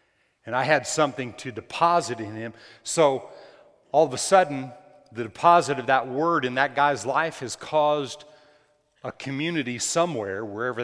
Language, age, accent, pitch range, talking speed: English, 40-59, American, 115-145 Hz, 155 wpm